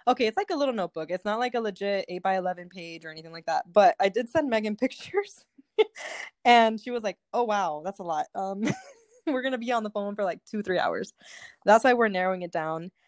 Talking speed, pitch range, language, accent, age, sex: 245 wpm, 190-260 Hz, English, American, 20-39, female